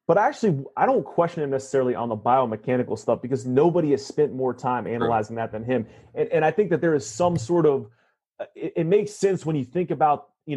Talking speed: 225 wpm